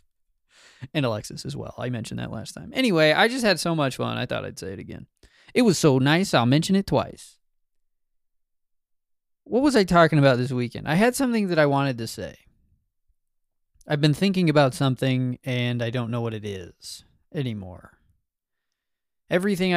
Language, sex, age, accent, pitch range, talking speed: English, male, 20-39, American, 115-155 Hz, 180 wpm